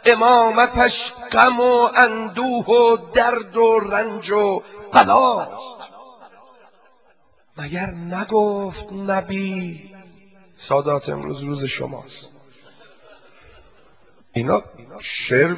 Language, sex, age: Persian, male, 50-69